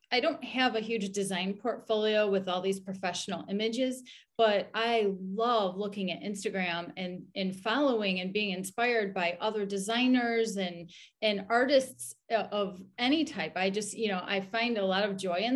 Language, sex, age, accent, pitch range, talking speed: English, female, 30-49, American, 195-240 Hz, 170 wpm